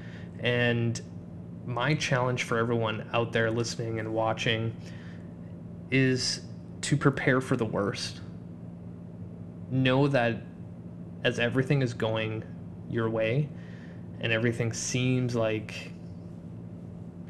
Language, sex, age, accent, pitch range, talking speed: English, male, 20-39, American, 90-125 Hz, 100 wpm